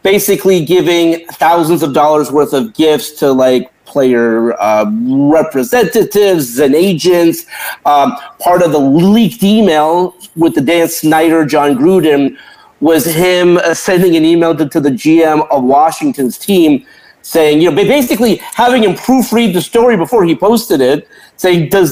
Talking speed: 150 wpm